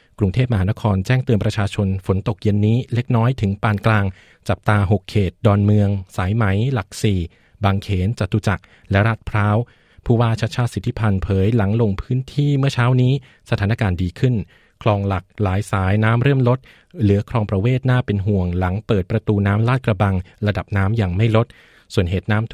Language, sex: Thai, male